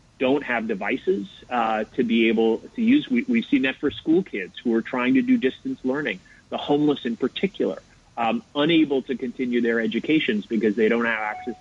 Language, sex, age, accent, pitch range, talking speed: English, male, 30-49, American, 115-155 Hz, 195 wpm